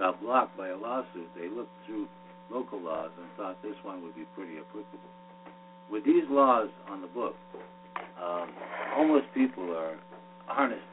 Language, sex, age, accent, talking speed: English, male, 60-79, American, 160 wpm